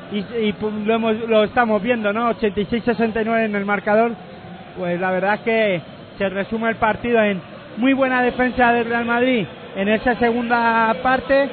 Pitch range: 220-250 Hz